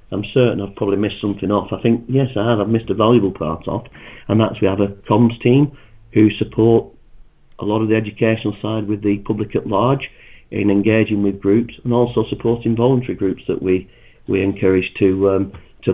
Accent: British